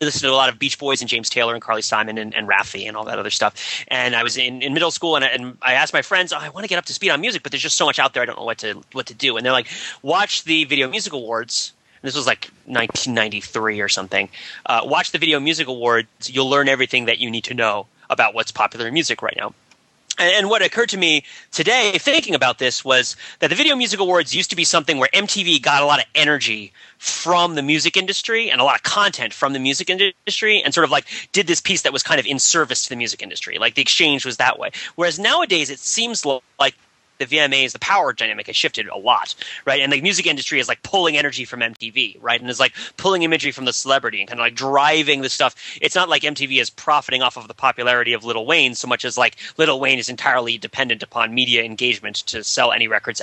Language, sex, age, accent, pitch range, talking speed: English, male, 30-49, American, 120-170 Hz, 255 wpm